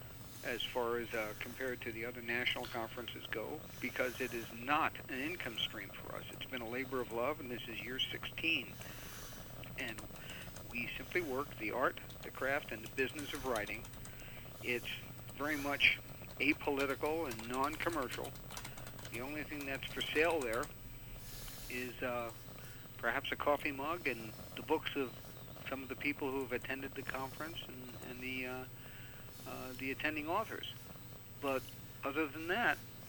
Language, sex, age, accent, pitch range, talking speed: English, male, 60-79, American, 120-135 Hz, 160 wpm